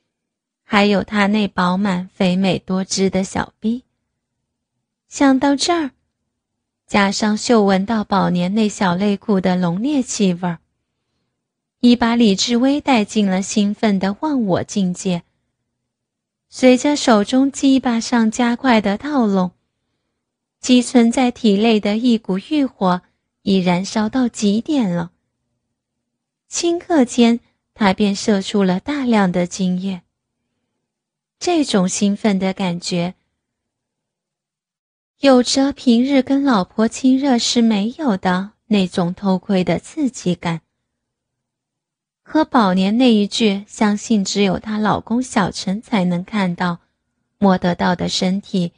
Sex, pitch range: female, 185-245 Hz